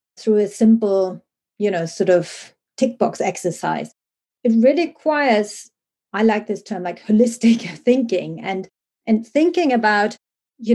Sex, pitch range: female, 200-245 Hz